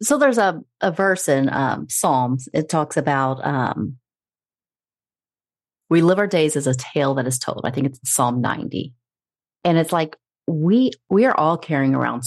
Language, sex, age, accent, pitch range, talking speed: English, female, 30-49, American, 135-170 Hz, 180 wpm